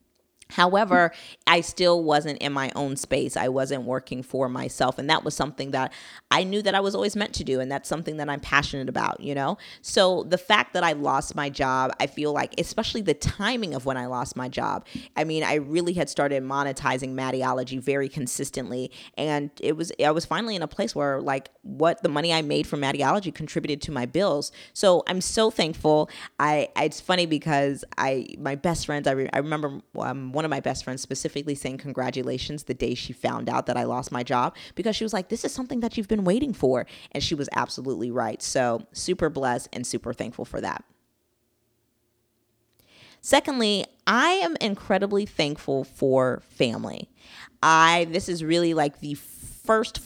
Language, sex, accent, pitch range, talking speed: English, female, American, 130-175 Hz, 195 wpm